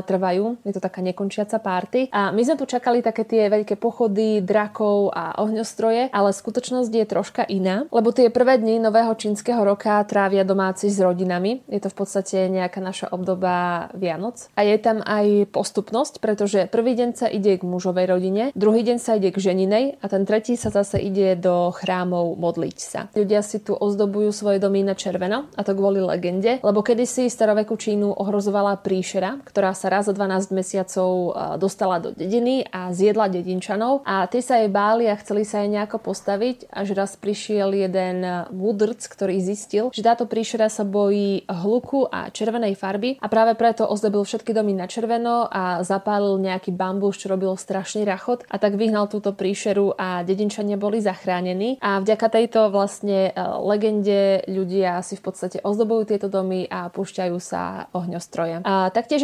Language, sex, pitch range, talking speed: Slovak, female, 190-225 Hz, 170 wpm